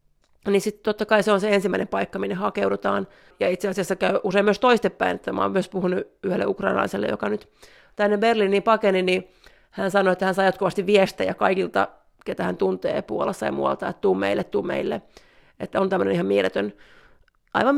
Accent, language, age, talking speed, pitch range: native, Finnish, 40-59, 190 wpm, 185-225 Hz